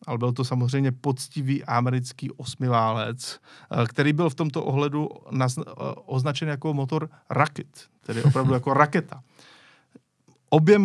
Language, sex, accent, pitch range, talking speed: Czech, male, native, 125-150 Hz, 115 wpm